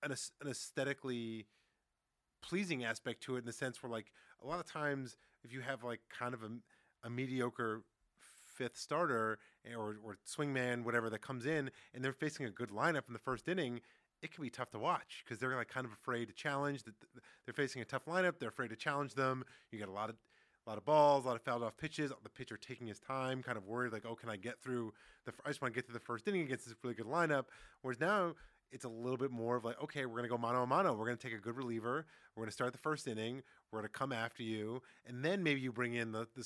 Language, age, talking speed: English, 30-49, 260 wpm